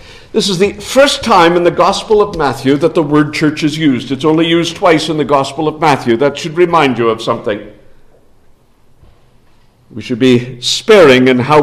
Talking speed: 190 wpm